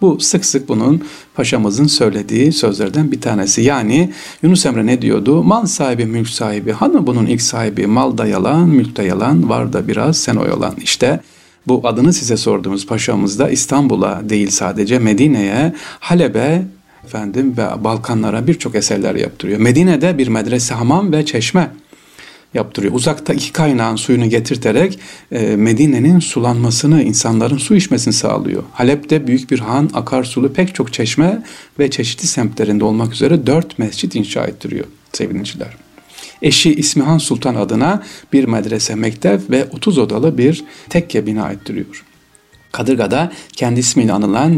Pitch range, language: 110-155 Hz, Turkish